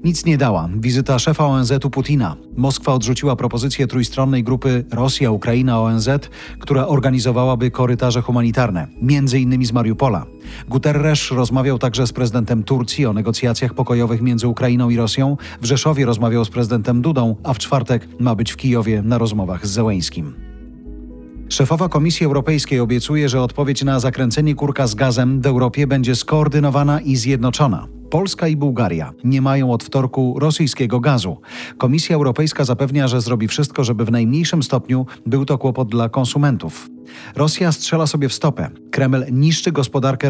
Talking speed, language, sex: 150 wpm, Polish, male